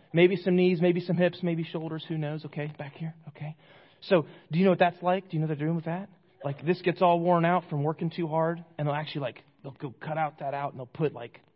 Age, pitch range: 30-49, 150-195 Hz